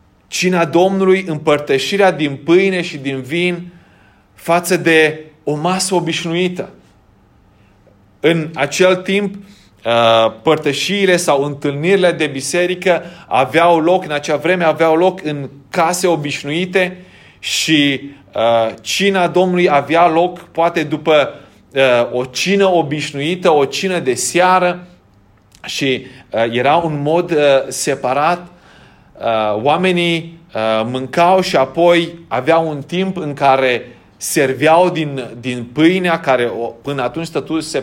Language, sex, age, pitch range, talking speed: Romanian, male, 30-49, 135-180 Hz, 105 wpm